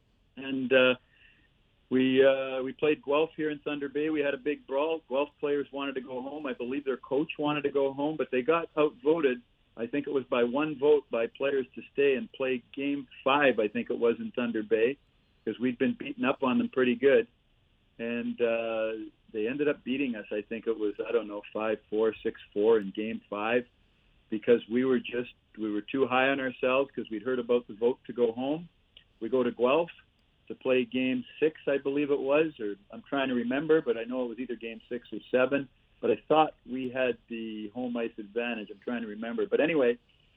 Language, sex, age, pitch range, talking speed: English, male, 50-69, 115-150 Hz, 220 wpm